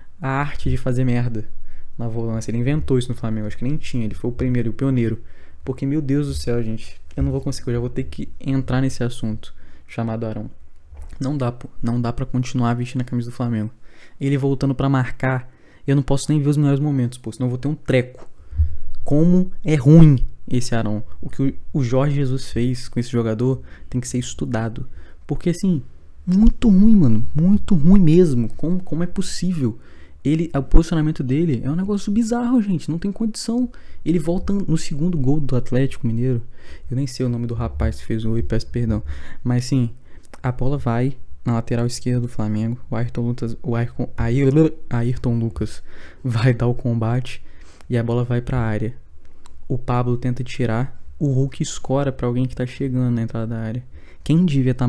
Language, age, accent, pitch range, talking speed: Portuguese, 20-39, Brazilian, 115-140 Hz, 195 wpm